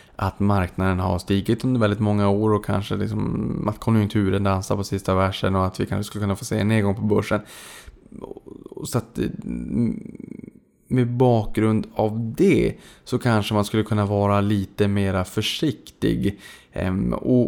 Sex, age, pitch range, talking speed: male, 20-39, 100-110 Hz, 155 wpm